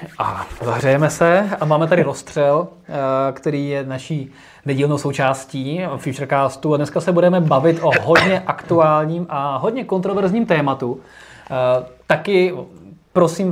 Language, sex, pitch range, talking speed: Czech, male, 135-165 Hz, 120 wpm